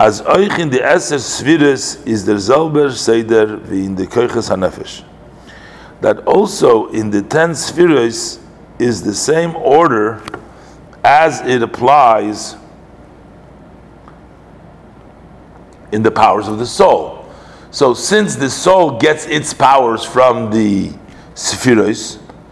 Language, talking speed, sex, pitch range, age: English, 110 wpm, male, 115-130 Hz, 50-69